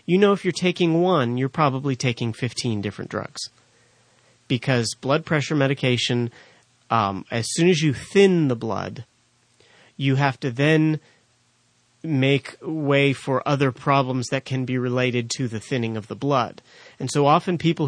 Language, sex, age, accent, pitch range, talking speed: English, male, 30-49, American, 120-145 Hz, 160 wpm